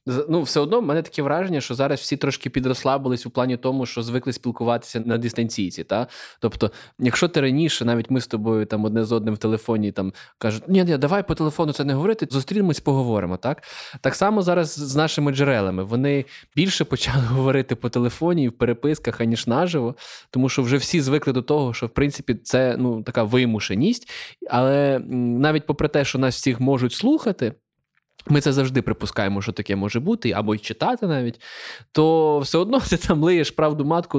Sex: male